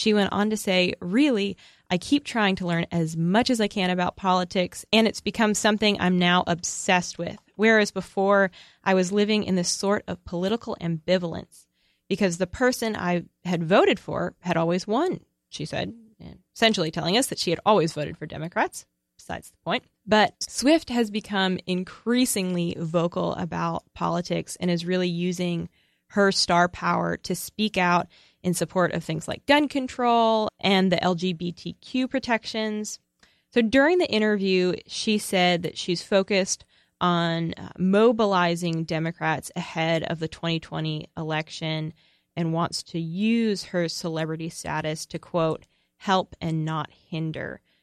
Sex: female